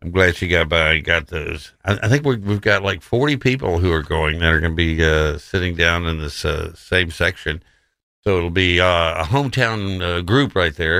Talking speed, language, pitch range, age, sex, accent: 230 wpm, English, 80-100 Hz, 60-79, male, American